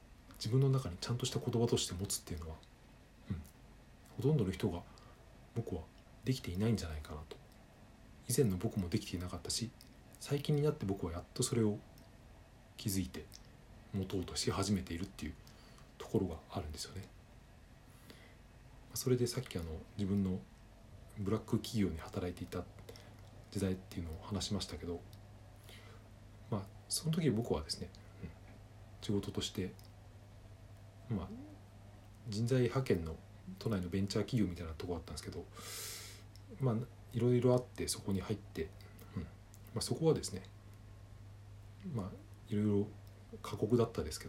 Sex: male